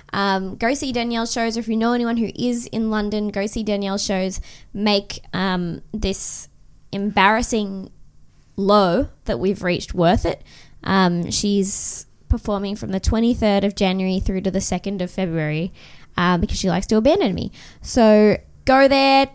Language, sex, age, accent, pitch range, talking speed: English, female, 20-39, Australian, 190-230 Hz, 160 wpm